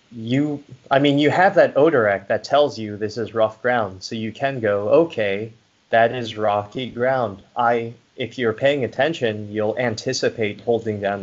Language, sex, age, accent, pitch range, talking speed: English, male, 20-39, American, 100-120 Hz, 175 wpm